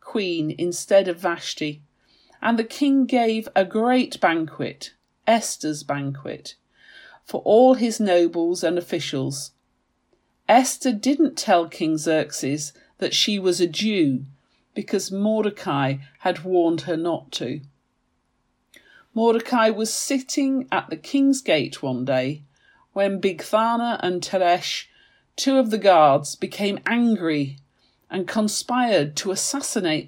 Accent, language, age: British, English, 40-59